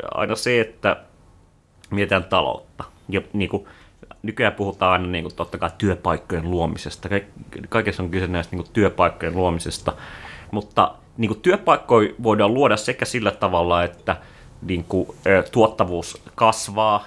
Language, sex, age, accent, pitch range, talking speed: Finnish, male, 30-49, native, 95-115 Hz, 135 wpm